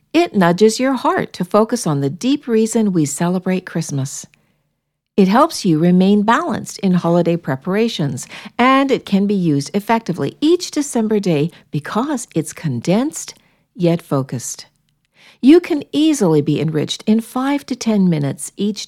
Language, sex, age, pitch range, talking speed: English, female, 60-79, 160-230 Hz, 145 wpm